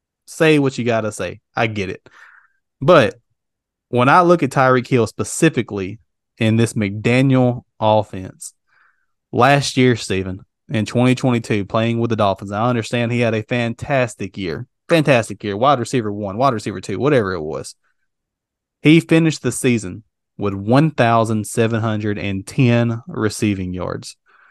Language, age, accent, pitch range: English, 20-39, American, 105-125 Hz